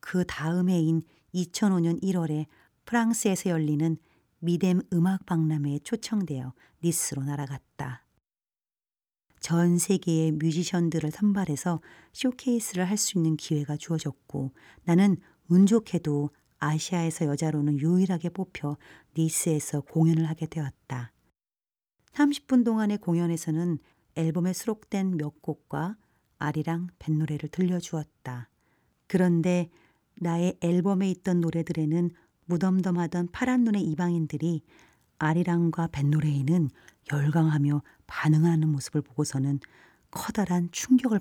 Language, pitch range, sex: Korean, 145-180 Hz, female